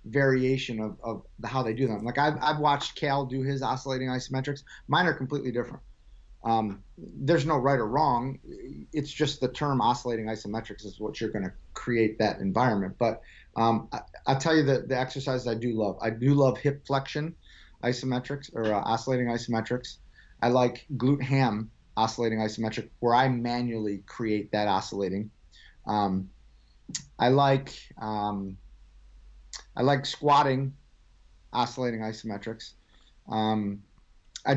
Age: 30-49